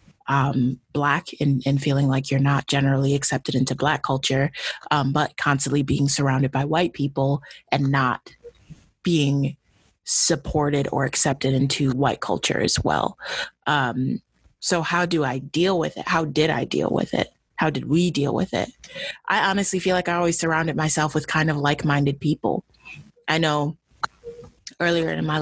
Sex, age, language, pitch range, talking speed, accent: female, 20-39, English, 140-155 Hz, 165 wpm, American